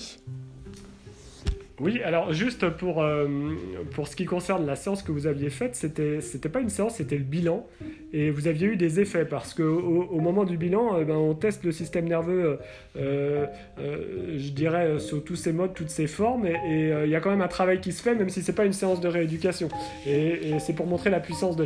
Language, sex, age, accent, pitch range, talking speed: French, male, 30-49, French, 140-175 Hz, 230 wpm